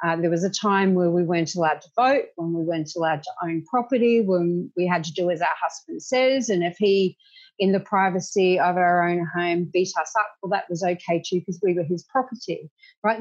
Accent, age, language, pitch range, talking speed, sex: Australian, 30-49, English, 170-215 Hz, 230 wpm, female